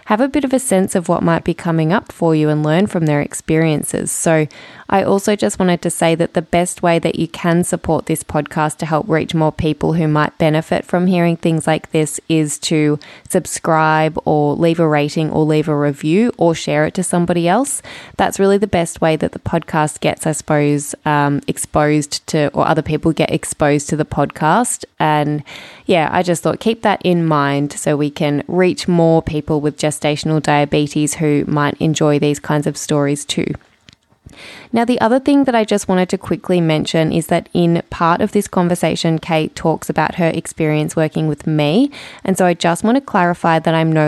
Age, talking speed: 20-39, 205 wpm